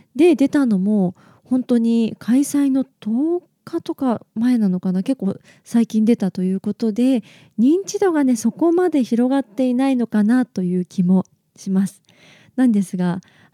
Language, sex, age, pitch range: Japanese, female, 20-39, 185-255 Hz